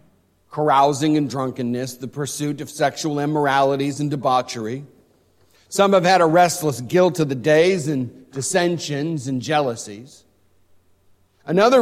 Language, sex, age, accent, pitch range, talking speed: English, male, 50-69, American, 105-150 Hz, 120 wpm